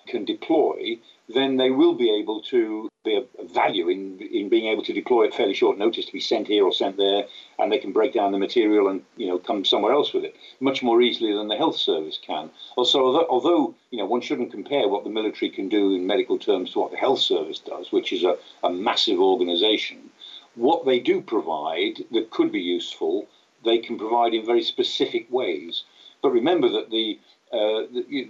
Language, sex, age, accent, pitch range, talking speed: English, male, 50-69, British, 330-385 Hz, 210 wpm